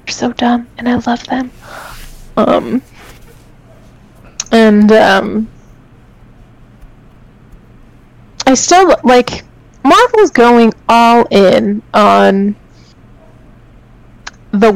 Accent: American